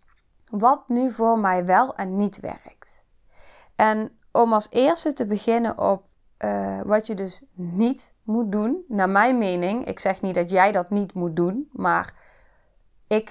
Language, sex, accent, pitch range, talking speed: Dutch, female, Dutch, 195-255 Hz, 160 wpm